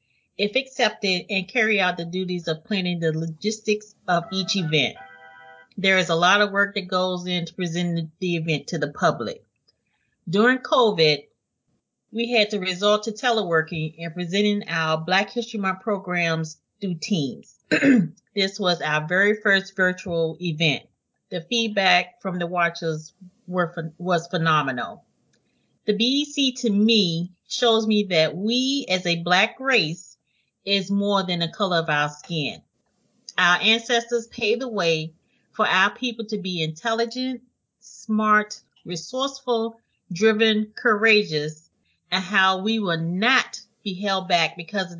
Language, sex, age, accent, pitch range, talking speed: English, female, 30-49, American, 170-220 Hz, 140 wpm